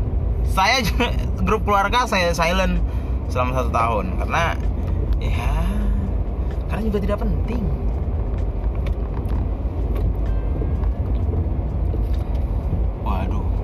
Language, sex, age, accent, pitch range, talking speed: Indonesian, male, 20-39, native, 80-90 Hz, 70 wpm